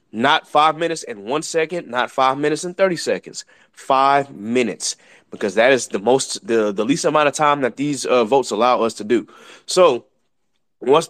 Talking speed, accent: 190 wpm, American